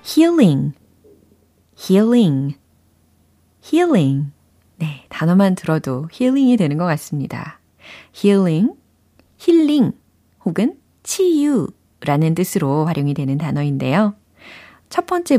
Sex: female